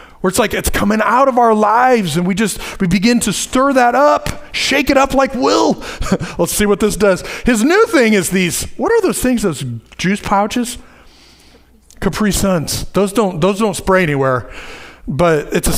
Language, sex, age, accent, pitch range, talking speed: English, male, 40-59, American, 185-260 Hz, 200 wpm